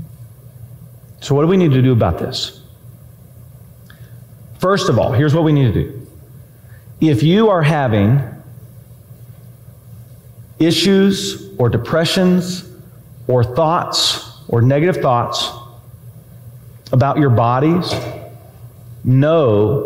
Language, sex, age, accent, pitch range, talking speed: English, male, 40-59, American, 120-175 Hz, 105 wpm